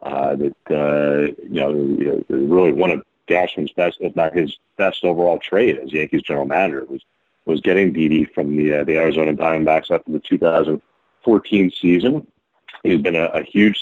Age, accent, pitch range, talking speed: 40-59, American, 80-95 Hz, 170 wpm